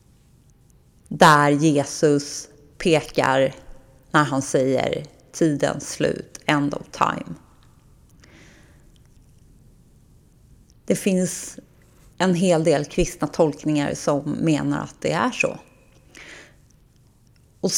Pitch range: 145-170 Hz